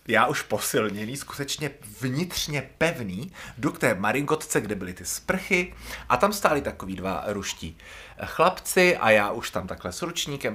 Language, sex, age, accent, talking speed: Czech, male, 30-49, native, 160 wpm